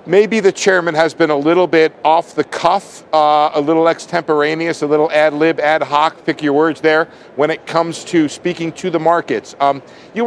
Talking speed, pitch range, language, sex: 175 wpm, 150-190 Hz, English, male